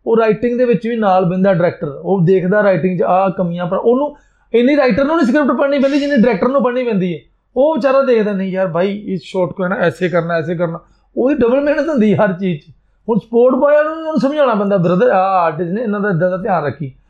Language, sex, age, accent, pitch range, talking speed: Hindi, male, 30-49, native, 175-235 Hz, 195 wpm